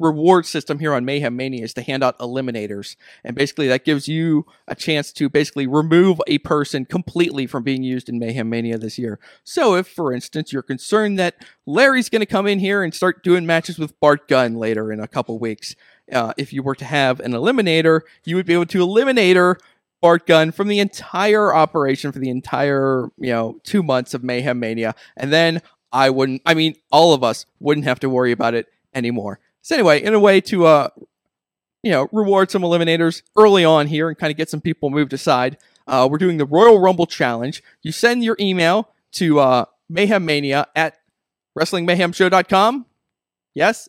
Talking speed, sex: 195 wpm, male